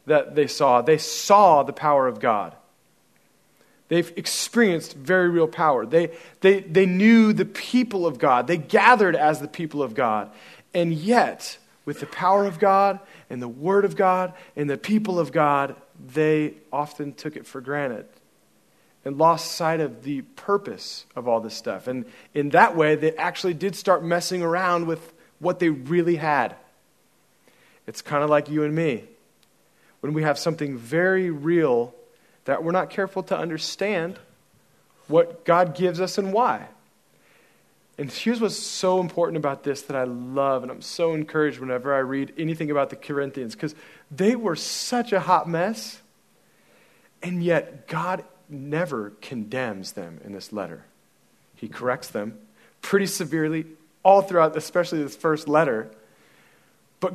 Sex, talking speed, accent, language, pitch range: male, 155 wpm, American, English, 145-190 Hz